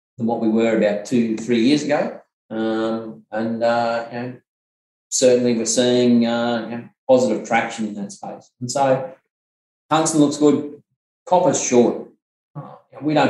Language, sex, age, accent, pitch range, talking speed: English, male, 30-49, Australian, 110-145 Hz, 130 wpm